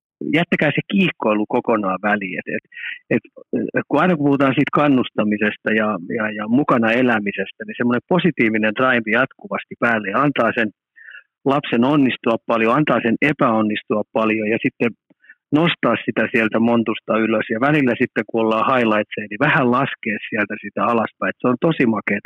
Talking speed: 155 wpm